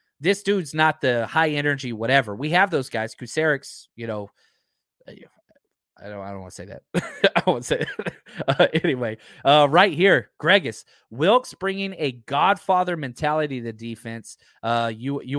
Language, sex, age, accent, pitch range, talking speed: English, male, 30-49, American, 125-175 Hz, 170 wpm